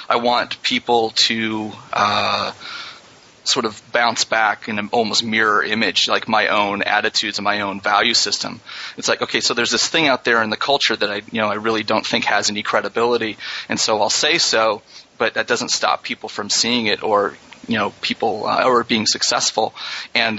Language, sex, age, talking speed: English, male, 30-49, 200 wpm